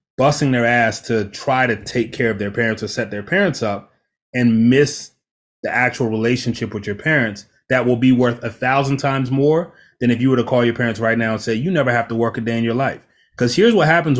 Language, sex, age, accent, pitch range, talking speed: English, male, 30-49, American, 115-155 Hz, 245 wpm